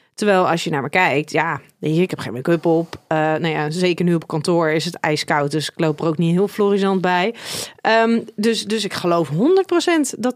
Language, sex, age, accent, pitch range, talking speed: Dutch, female, 30-49, Dutch, 170-215 Hz, 220 wpm